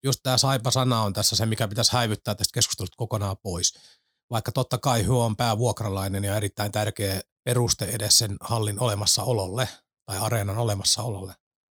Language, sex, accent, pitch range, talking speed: Finnish, male, native, 105-125 Hz, 155 wpm